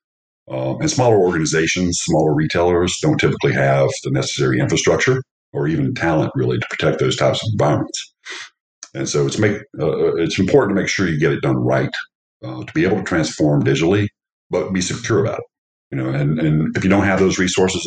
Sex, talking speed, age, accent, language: male, 200 wpm, 50-69, American, English